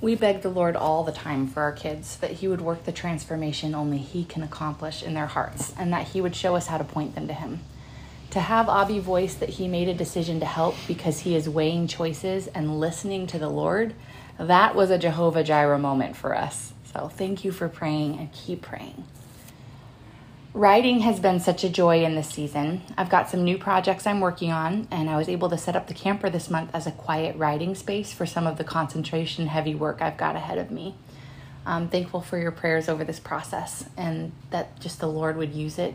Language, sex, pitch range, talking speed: English, female, 150-180 Hz, 220 wpm